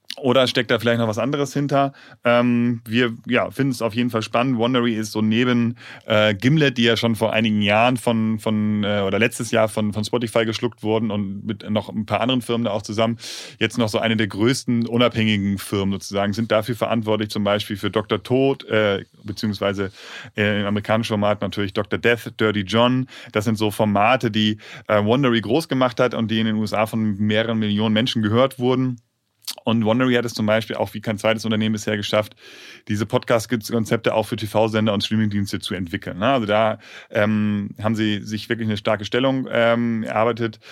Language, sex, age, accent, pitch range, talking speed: German, male, 30-49, German, 105-120 Hz, 195 wpm